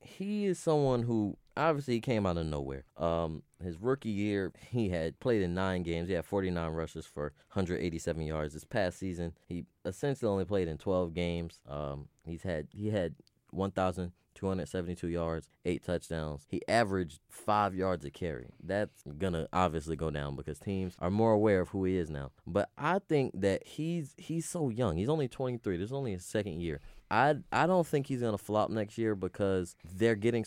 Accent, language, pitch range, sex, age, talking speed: American, English, 85-105 Hz, male, 20-39, 210 wpm